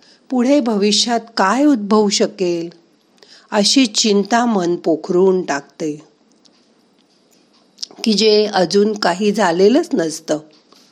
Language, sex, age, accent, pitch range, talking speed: Marathi, female, 50-69, native, 175-225 Hz, 90 wpm